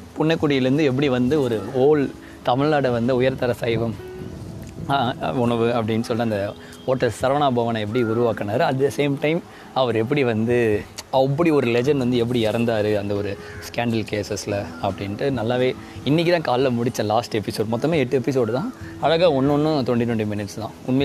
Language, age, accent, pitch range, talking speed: Tamil, 20-39, native, 110-135 Hz, 150 wpm